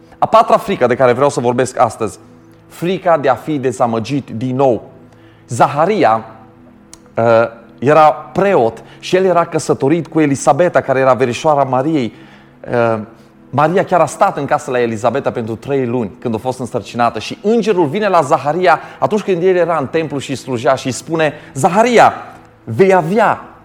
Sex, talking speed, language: male, 165 wpm, Romanian